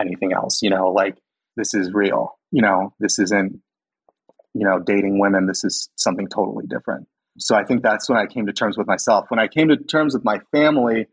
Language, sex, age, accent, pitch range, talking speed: English, male, 30-49, American, 100-110 Hz, 215 wpm